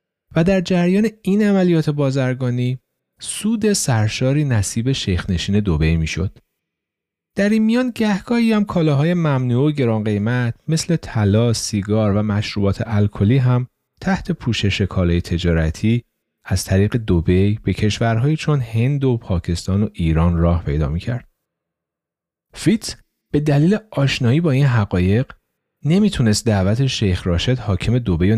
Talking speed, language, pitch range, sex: 135 wpm, Persian, 95-135 Hz, male